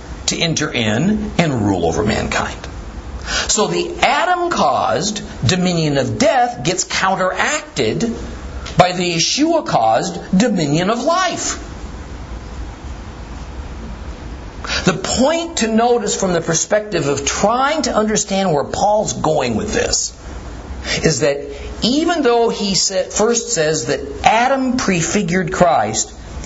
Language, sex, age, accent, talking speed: English, male, 50-69, American, 110 wpm